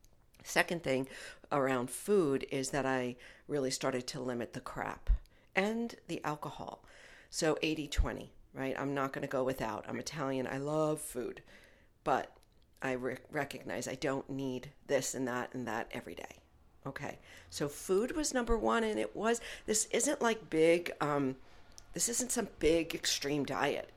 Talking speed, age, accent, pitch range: 160 wpm, 50-69, American, 115-150 Hz